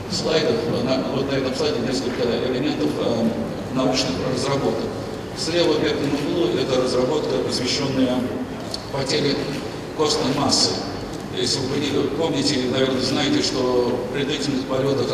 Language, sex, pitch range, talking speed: Russian, male, 120-140 Hz, 120 wpm